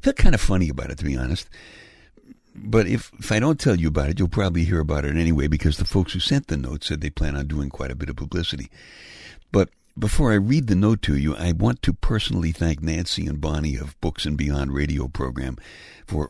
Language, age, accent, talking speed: English, 60-79, American, 240 wpm